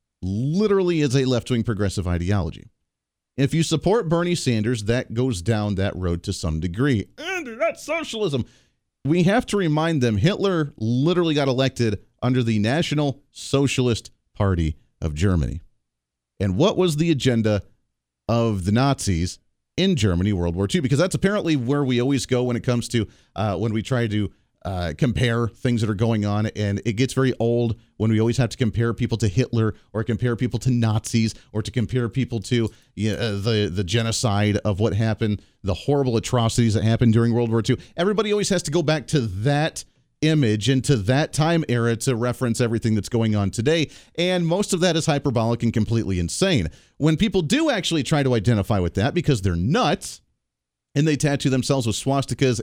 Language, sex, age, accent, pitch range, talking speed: English, male, 40-59, American, 110-150 Hz, 185 wpm